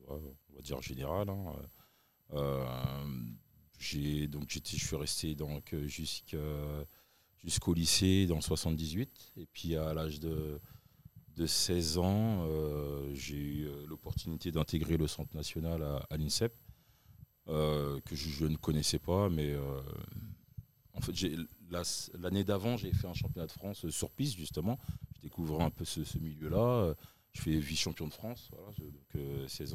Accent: French